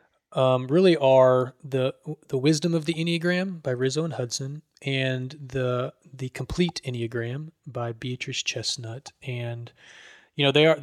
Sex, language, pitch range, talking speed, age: male, English, 120-140 Hz, 145 wpm, 20-39